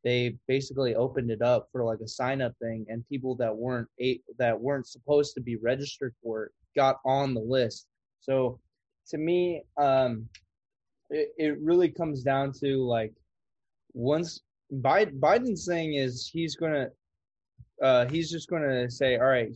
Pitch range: 120-145 Hz